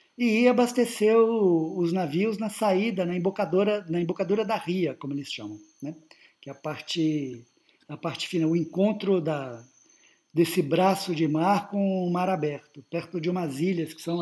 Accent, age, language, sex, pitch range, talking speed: Brazilian, 50-69, Portuguese, male, 155-210 Hz, 165 wpm